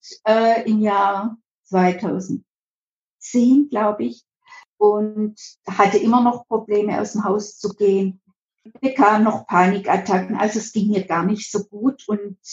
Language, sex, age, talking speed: German, female, 50-69, 135 wpm